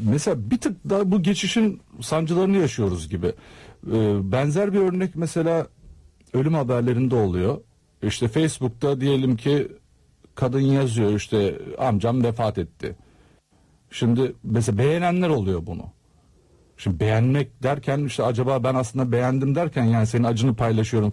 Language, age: Turkish, 50-69